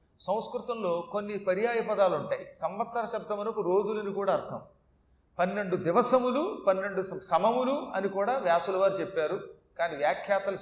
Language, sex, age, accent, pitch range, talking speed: Telugu, male, 40-59, native, 205-270 Hz, 120 wpm